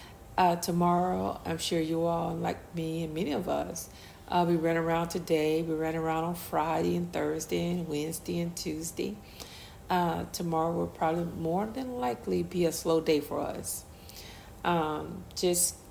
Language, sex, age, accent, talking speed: English, female, 40-59, American, 160 wpm